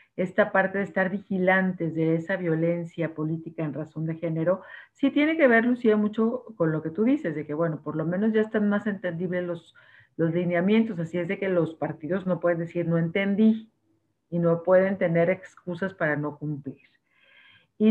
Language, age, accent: Spanish, 50-69, Mexican